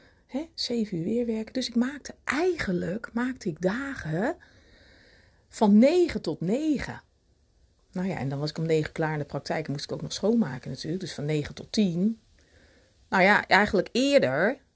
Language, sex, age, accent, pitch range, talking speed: Dutch, female, 40-59, Dutch, 145-220 Hz, 175 wpm